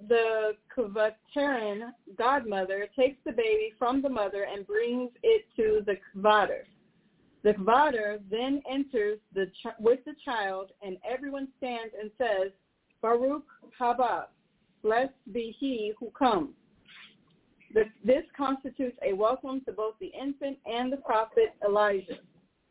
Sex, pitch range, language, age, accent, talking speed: female, 210-270 Hz, English, 40-59, American, 120 wpm